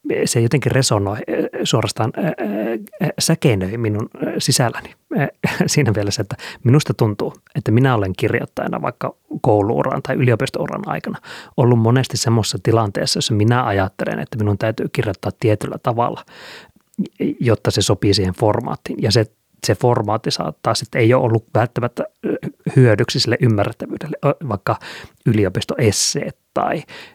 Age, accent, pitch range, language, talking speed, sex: 30-49, native, 105-125 Hz, Finnish, 120 wpm, male